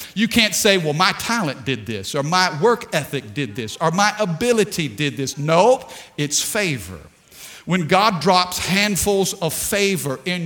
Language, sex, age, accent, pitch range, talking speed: English, male, 50-69, American, 145-210 Hz, 165 wpm